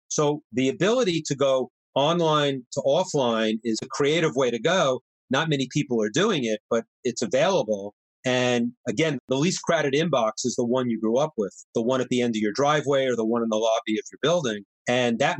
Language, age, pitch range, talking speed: English, 40-59, 115-140 Hz, 215 wpm